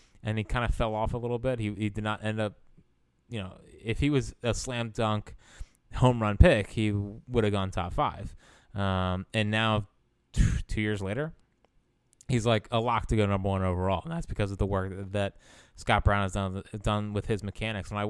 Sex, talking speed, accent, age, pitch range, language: male, 220 wpm, American, 20-39, 100-120 Hz, English